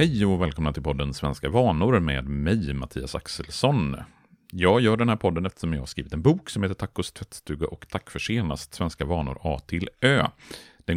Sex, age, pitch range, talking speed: male, 40-59, 75-115 Hz, 195 wpm